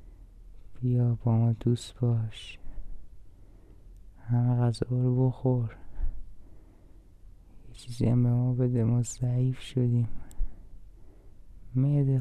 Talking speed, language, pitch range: 95 wpm, Persian, 95-125 Hz